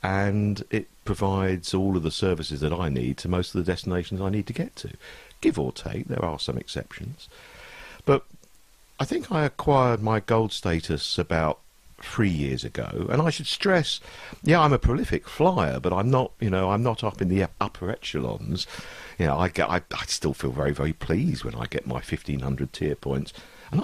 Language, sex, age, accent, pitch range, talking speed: English, male, 50-69, British, 70-105 Hz, 200 wpm